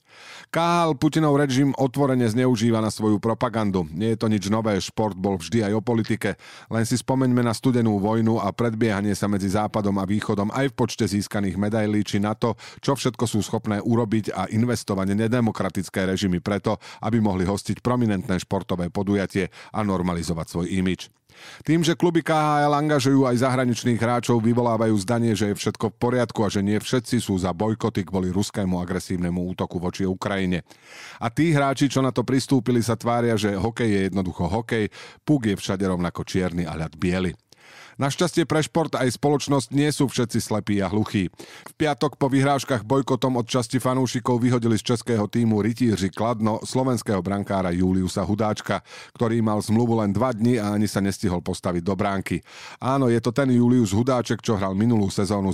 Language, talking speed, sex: Slovak, 175 wpm, male